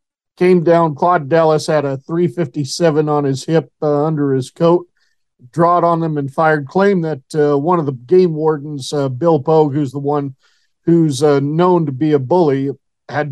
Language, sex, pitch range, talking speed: English, male, 145-180 Hz, 185 wpm